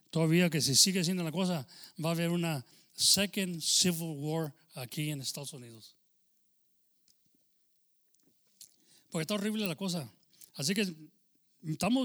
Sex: male